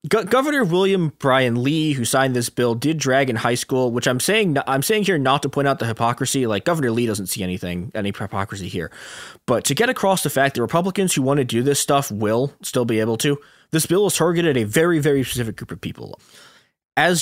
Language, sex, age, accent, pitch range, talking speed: English, male, 20-39, American, 110-155 Hz, 230 wpm